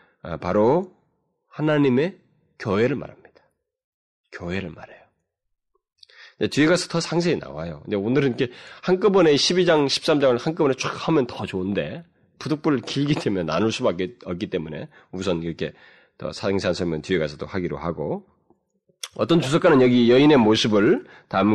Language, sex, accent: Korean, male, native